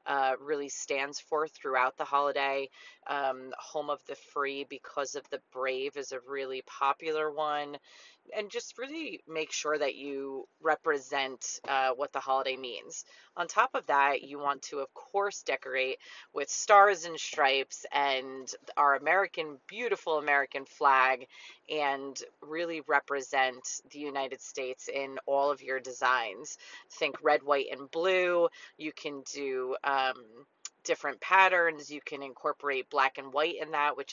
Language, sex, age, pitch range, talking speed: English, female, 30-49, 135-155 Hz, 150 wpm